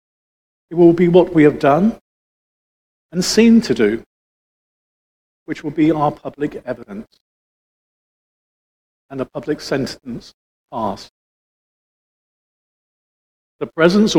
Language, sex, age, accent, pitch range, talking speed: English, male, 50-69, British, 125-175 Hz, 100 wpm